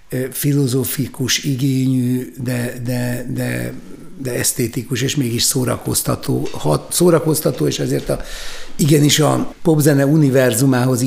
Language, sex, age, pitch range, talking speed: Hungarian, male, 60-79, 125-145 Hz, 105 wpm